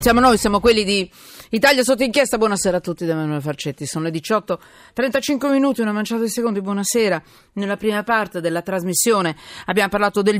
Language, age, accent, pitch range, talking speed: Italian, 40-59, native, 165-210 Hz, 180 wpm